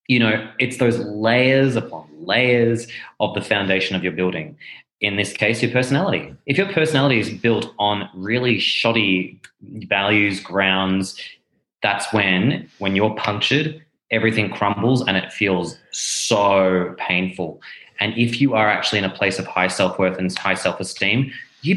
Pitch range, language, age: 95-120 Hz, English, 20-39